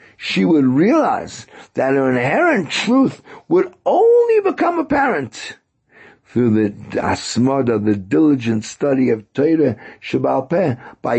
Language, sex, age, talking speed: English, male, 60-79, 115 wpm